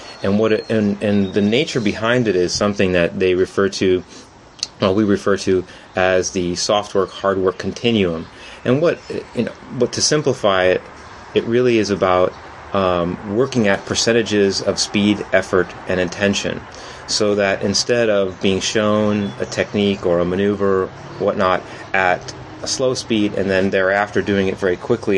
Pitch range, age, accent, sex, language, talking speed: 95-110 Hz, 30-49, American, male, English, 165 wpm